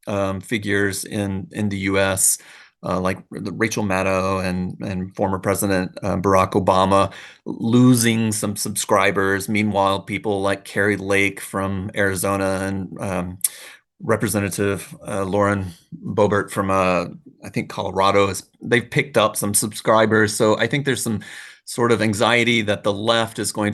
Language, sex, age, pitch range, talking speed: English, male, 30-49, 95-110 Hz, 145 wpm